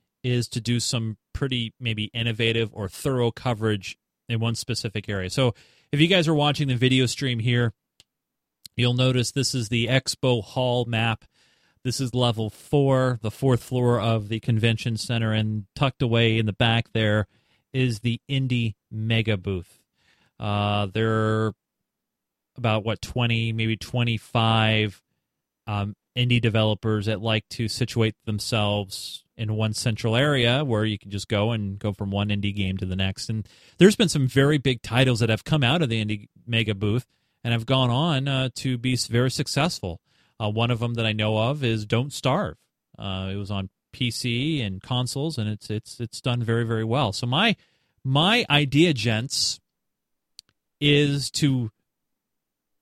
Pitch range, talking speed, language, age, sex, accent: 110-130 Hz, 165 wpm, English, 30-49, male, American